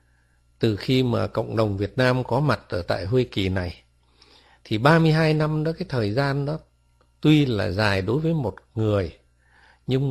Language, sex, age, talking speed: Vietnamese, male, 60-79, 180 wpm